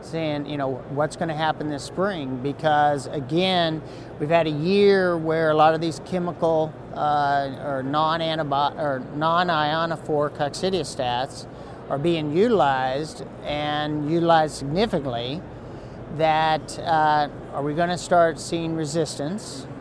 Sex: male